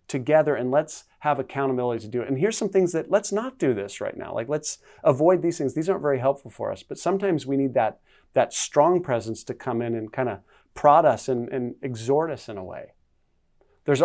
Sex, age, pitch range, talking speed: male, 30-49, 110-150 Hz, 230 wpm